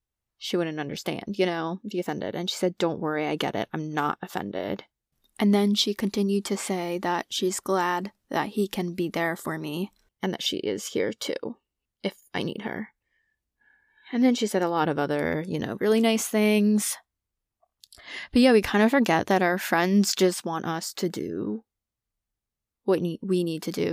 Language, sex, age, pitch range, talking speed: English, female, 20-39, 170-210 Hz, 195 wpm